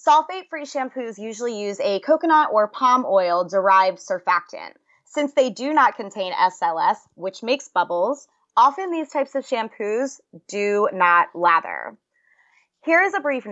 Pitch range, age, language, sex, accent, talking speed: 200-295 Hz, 20-39, English, female, American, 140 wpm